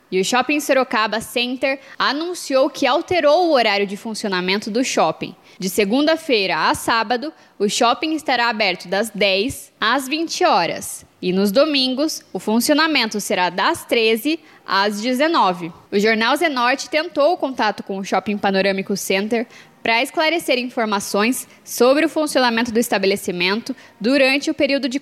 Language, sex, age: Portuguese, female, 10-29